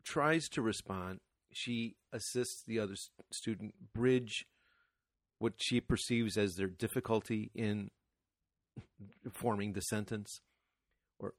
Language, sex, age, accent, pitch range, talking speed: English, male, 40-59, American, 100-125 Hz, 105 wpm